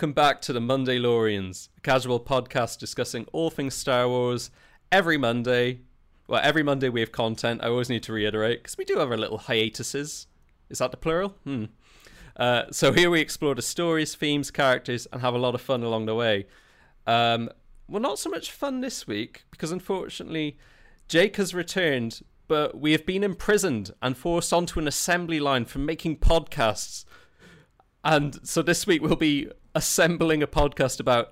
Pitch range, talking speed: 120-160 Hz, 180 wpm